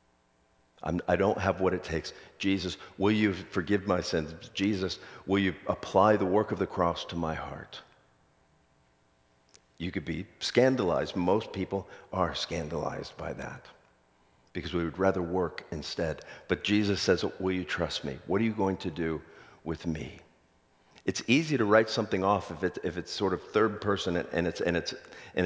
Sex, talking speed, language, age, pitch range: male, 165 wpm, English, 50-69, 80-105 Hz